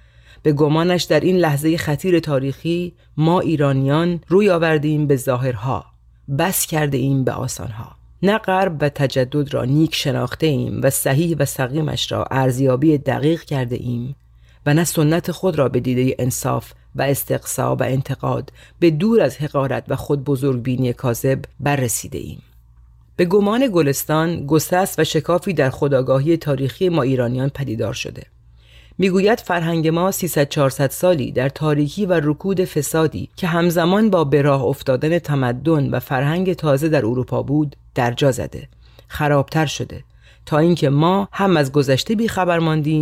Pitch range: 130-165 Hz